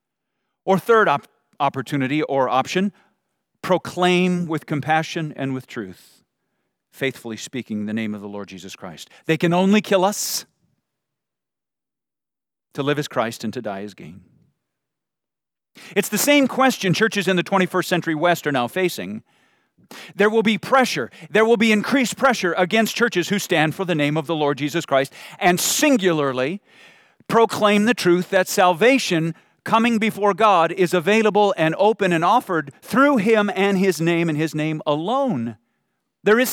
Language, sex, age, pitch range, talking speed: English, male, 40-59, 155-220 Hz, 155 wpm